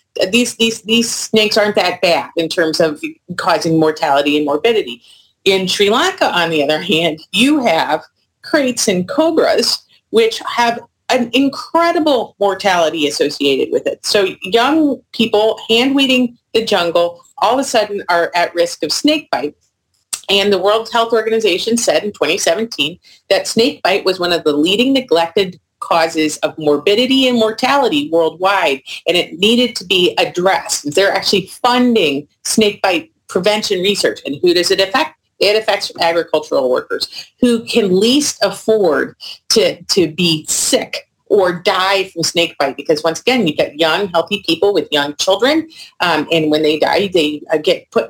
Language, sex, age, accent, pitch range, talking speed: English, female, 40-59, American, 170-240 Hz, 160 wpm